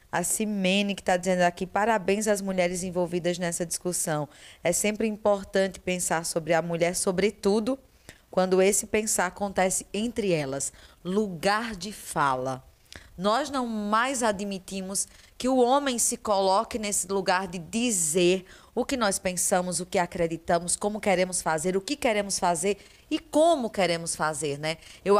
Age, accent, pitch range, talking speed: 20-39, Brazilian, 185-240 Hz, 150 wpm